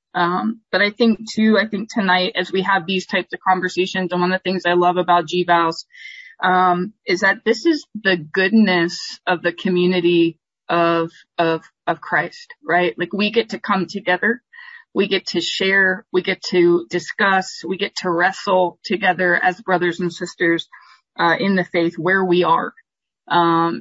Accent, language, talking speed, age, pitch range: American, English, 175 wpm, 20-39, 175-200 Hz